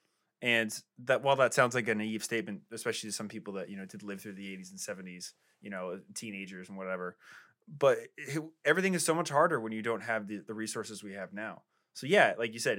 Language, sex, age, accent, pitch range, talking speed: English, male, 20-39, American, 105-130 Hz, 235 wpm